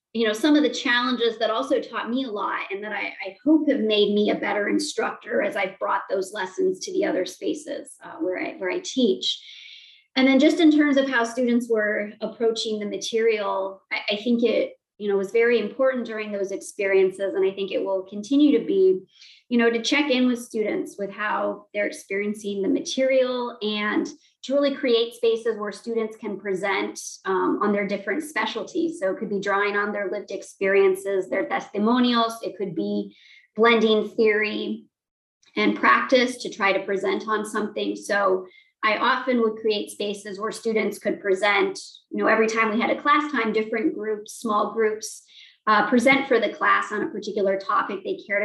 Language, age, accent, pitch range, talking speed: English, 30-49, American, 205-255 Hz, 190 wpm